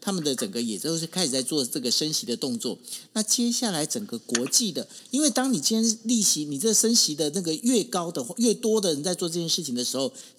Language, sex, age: Chinese, male, 50-69